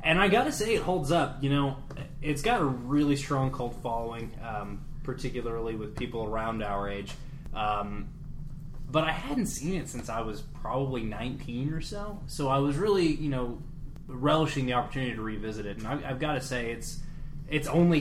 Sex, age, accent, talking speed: male, 20-39, American, 185 wpm